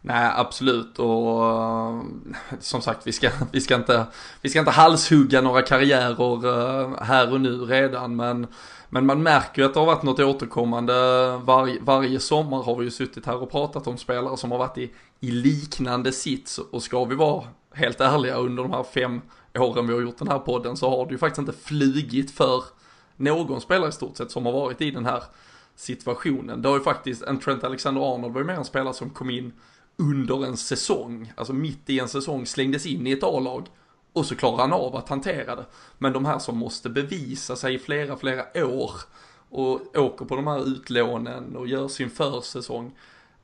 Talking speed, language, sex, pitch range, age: 200 wpm, Swedish, male, 125-140 Hz, 20-39